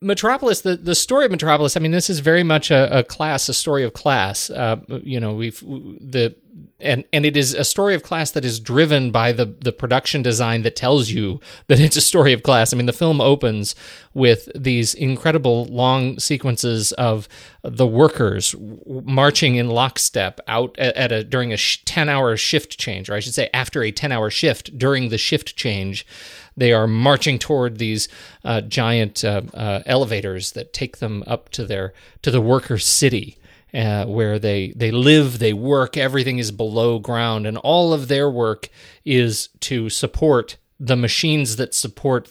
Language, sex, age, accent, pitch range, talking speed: English, male, 40-59, American, 110-140 Hz, 190 wpm